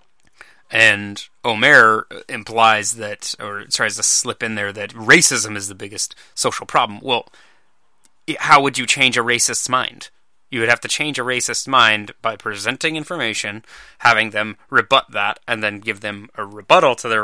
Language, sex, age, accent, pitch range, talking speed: English, male, 30-49, American, 110-125 Hz, 165 wpm